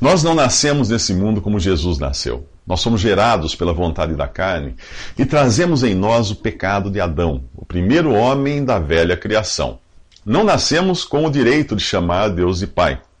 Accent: Brazilian